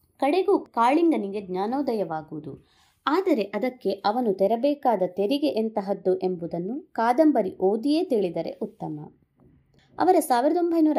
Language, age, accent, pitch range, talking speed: Kannada, 30-49, native, 190-280 Hz, 95 wpm